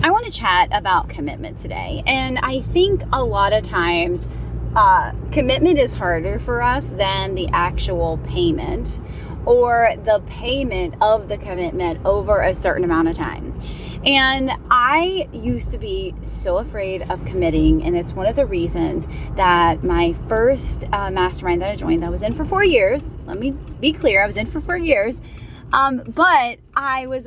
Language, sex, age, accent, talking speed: English, female, 10-29, American, 175 wpm